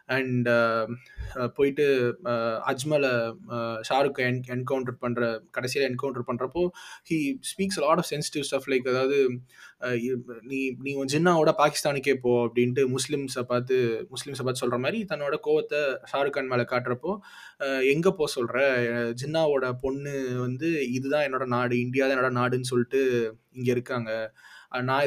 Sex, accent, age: male, native, 20-39